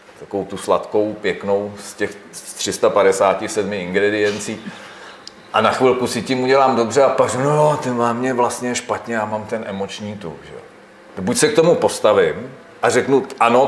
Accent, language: native, Czech